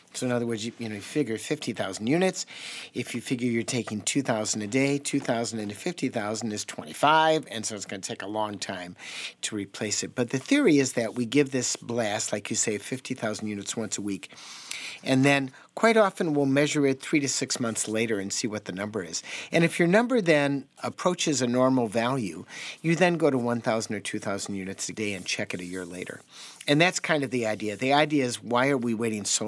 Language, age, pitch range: English, 50-69, 110-140 Hz